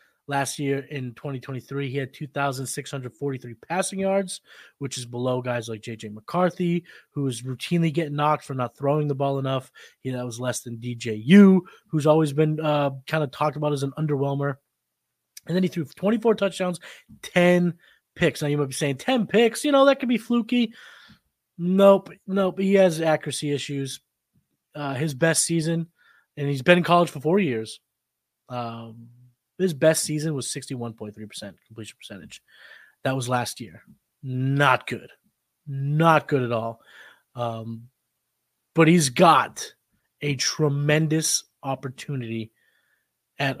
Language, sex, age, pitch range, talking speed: English, male, 20-39, 120-160 Hz, 145 wpm